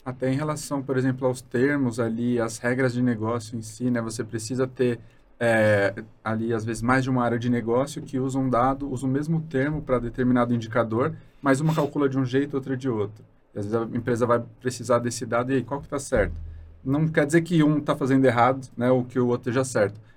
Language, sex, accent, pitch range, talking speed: Portuguese, male, Brazilian, 120-135 Hz, 235 wpm